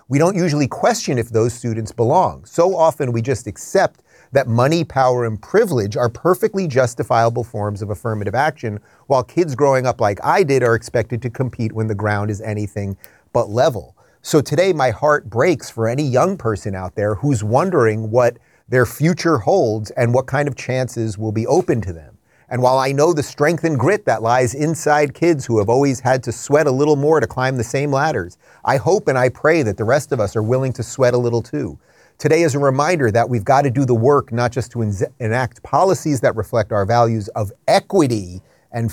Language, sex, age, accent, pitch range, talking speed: English, male, 30-49, American, 115-150 Hz, 210 wpm